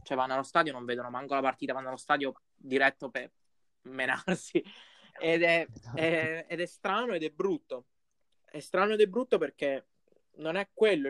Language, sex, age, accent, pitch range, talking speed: Italian, male, 20-39, native, 140-190 Hz, 180 wpm